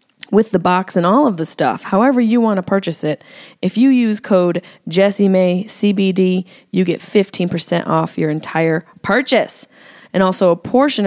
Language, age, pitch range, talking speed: English, 20-39, 165-220 Hz, 185 wpm